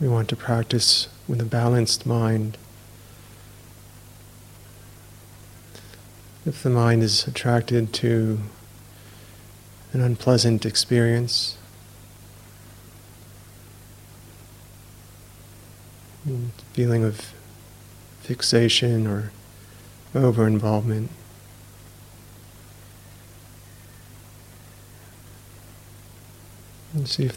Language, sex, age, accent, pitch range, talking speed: English, male, 50-69, American, 105-115 Hz, 55 wpm